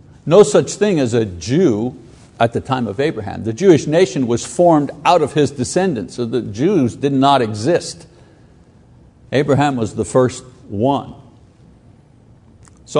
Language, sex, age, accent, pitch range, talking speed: English, male, 60-79, American, 130-180 Hz, 150 wpm